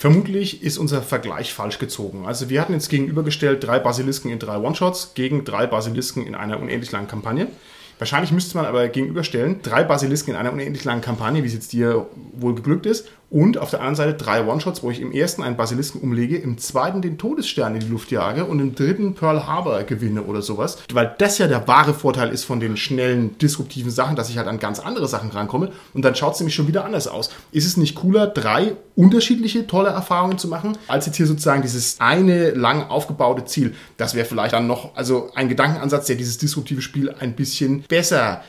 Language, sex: German, male